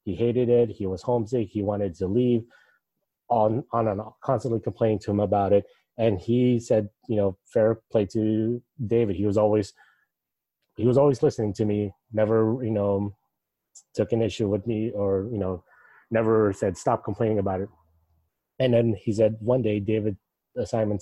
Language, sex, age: English, male, 30-49